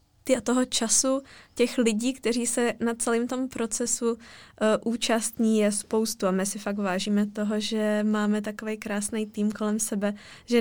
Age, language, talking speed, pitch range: 20-39, Czech, 165 wpm, 210-235 Hz